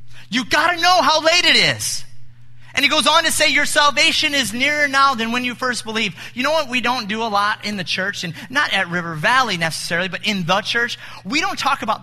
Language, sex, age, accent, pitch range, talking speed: English, male, 30-49, American, 185-270 Hz, 245 wpm